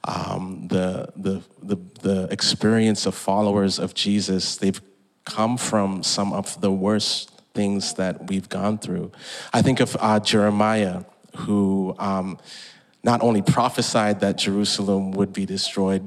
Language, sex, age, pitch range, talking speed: English, male, 30-49, 100-110 Hz, 140 wpm